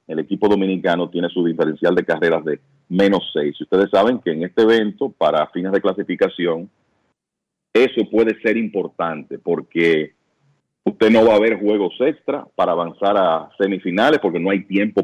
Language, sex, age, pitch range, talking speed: Spanish, male, 40-59, 95-135 Hz, 165 wpm